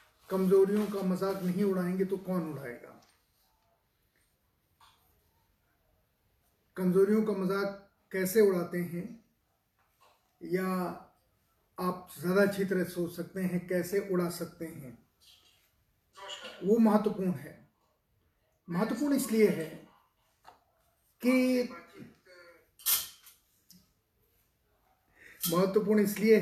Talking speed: 80 wpm